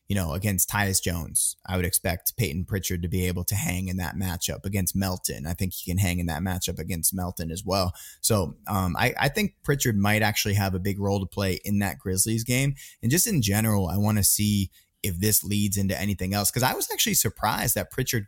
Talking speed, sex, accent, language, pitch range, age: 235 wpm, male, American, English, 90-105 Hz, 20-39